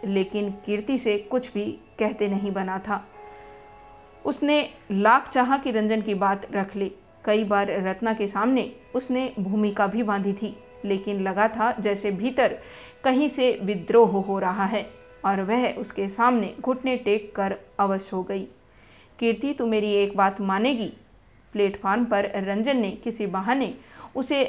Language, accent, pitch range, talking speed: Hindi, native, 195-240 Hz, 155 wpm